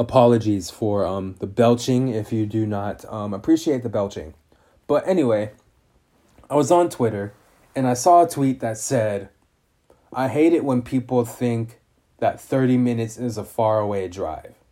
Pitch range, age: 110-140 Hz, 20-39